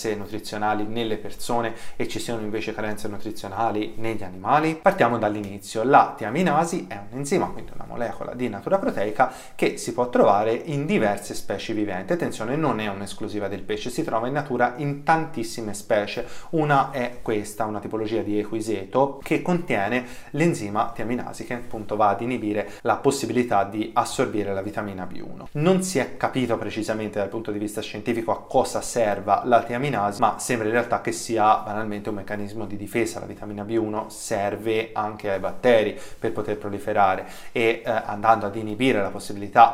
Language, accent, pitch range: Italian, native, 105-120 Hz